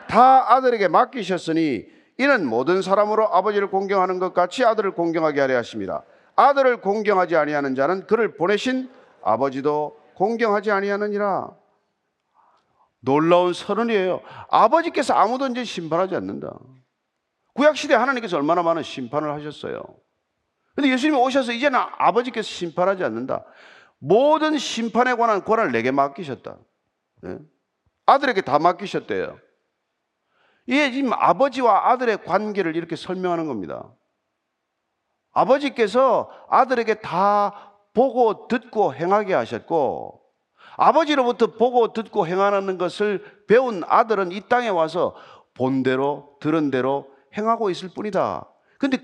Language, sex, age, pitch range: Korean, male, 40-59, 175-245 Hz